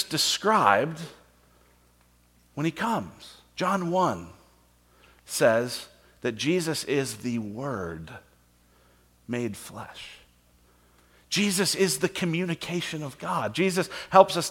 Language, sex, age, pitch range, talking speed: English, male, 40-59, 120-180 Hz, 95 wpm